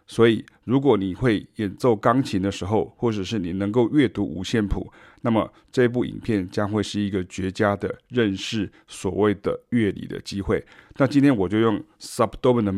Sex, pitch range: male, 100-120 Hz